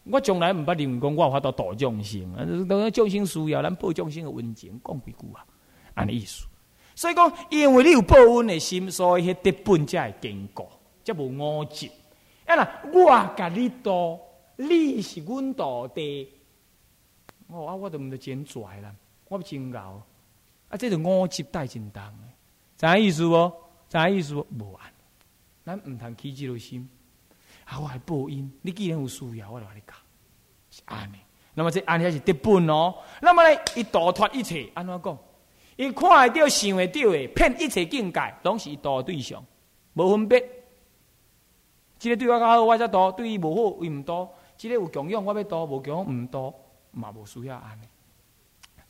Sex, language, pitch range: male, Chinese, 130-210 Hz